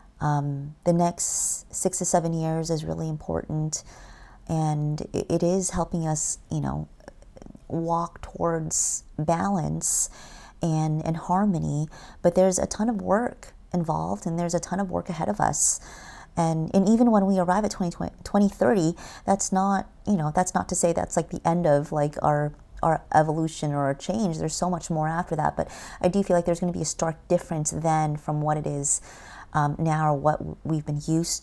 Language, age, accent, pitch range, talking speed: English, 30-49, American, 150-175 Hz, 185 wpm